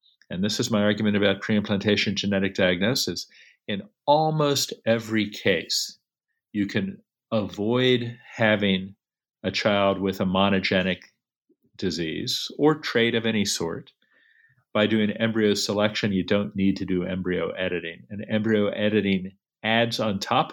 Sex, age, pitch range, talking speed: male, 50-69, 95-120 Hz, 130 wpm